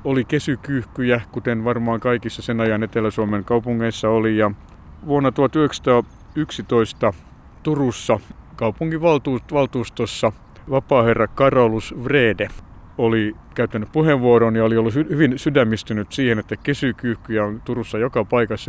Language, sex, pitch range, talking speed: Finnish, male, 110-130 Hz, 105 wpm